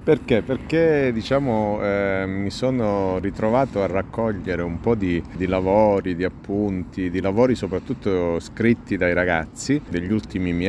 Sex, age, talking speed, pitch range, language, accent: male, 40-59, 135 wpm, 85-110 Hz, Italian, native